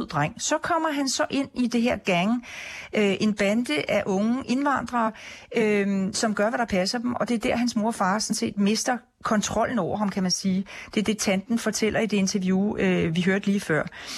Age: 40-59